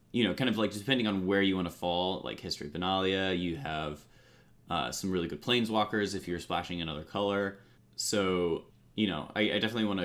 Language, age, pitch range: English, 20-39, 90-110 Hz